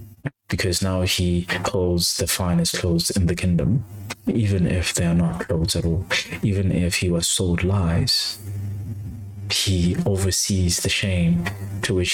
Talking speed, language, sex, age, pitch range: 150 wpm, English, male, 20-39, 90-105 Hz